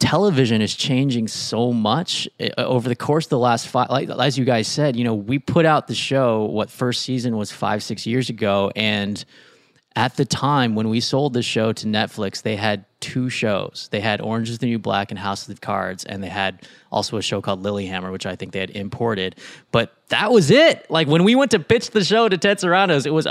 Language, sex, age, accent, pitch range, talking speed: English, male, 20-39, American, 110-170 Hz, 235 wpm